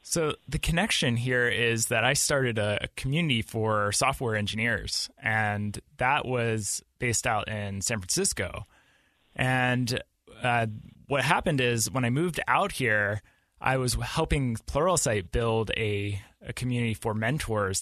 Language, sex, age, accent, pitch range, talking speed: English, male, 20-39, American, 110-125 Hz, 140 wpm